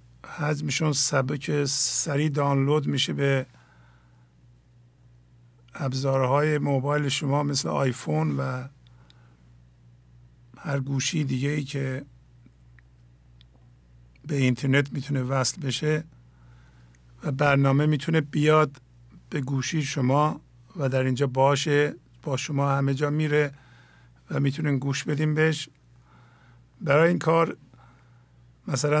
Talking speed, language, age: 35 wpm, English, 50-69